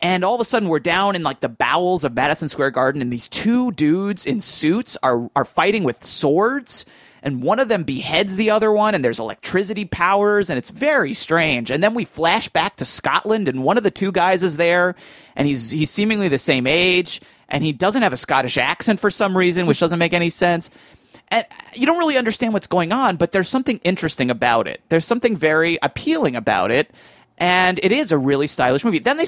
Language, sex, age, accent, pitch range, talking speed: English, male, 30-49, American, 155-220 Hz, 220 wpm